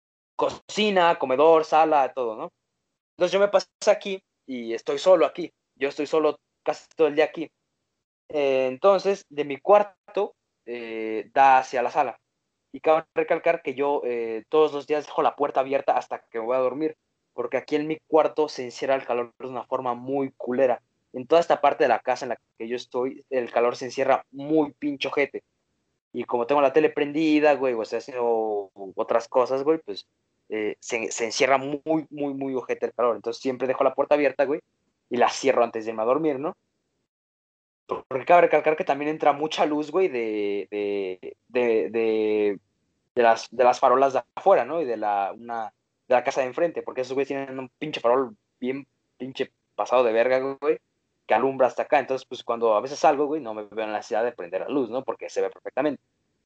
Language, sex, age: Spanish, male, 20-39